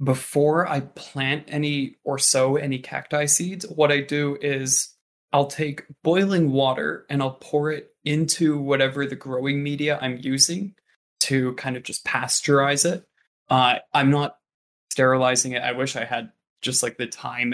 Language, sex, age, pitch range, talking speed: English, male, 20-39, 130-145 Hz, 160 wpm